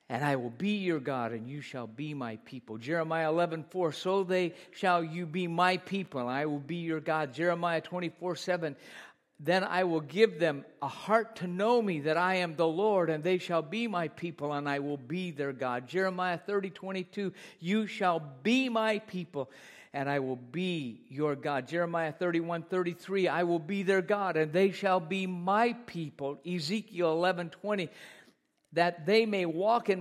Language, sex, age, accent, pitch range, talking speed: English, male, 50-69, American, 155-195 Hz, 190 wpm